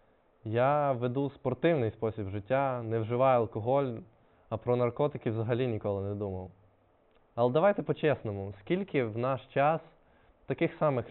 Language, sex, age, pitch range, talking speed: Ukrainian, male, 20-39, 110-140 Hz, 130 wpm